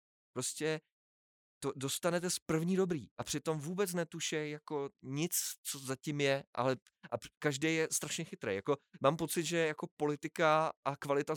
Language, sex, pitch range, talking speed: Czech, male, 100-150 Hz, 155 wpm